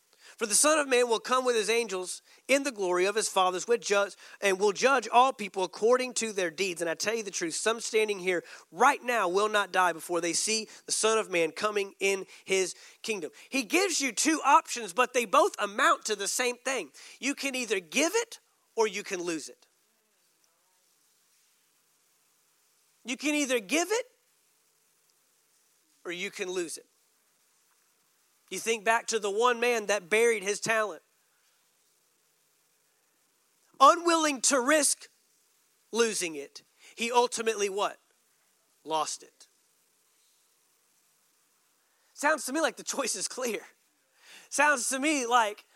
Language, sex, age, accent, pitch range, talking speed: English, male, 40-59, American, 205-280 Hz, 150 wpm